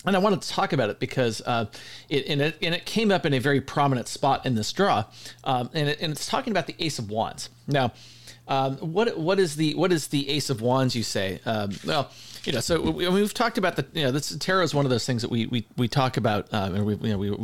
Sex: male